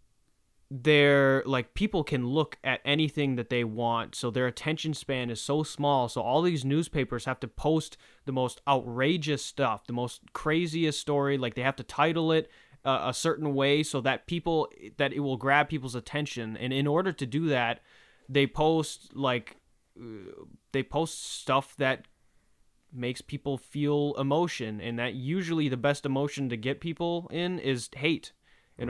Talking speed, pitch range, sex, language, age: 170 wpm, 125-150 Hz, male, English, 20-39